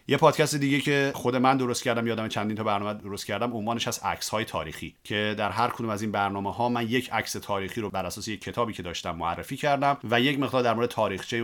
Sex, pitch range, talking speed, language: male, 95-120 Hz, 230 wpm, Persian